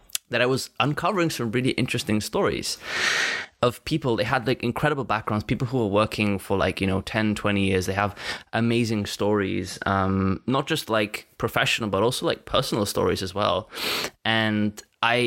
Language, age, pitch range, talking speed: English, 20-39, 95-115 Hz, 170 wpm